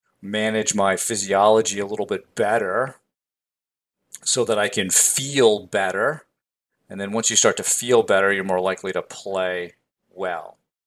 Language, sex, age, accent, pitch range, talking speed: English, male, 40-59, American, 90-115 Hz, 150 wpm